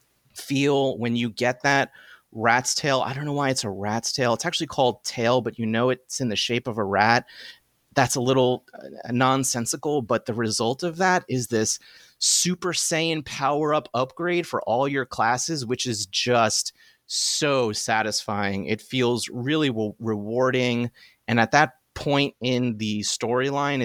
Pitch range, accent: 110-140 Hz, American